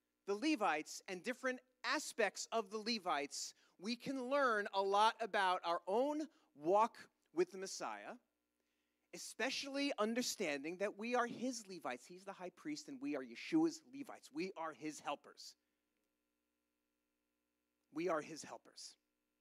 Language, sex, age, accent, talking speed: English, male, 30-49, American, 135 wpm